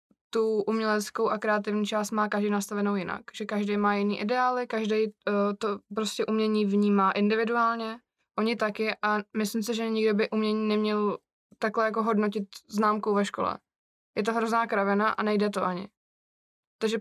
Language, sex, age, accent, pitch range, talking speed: Czech, female, 20-39, native, 200-215 Hz, 155 wpm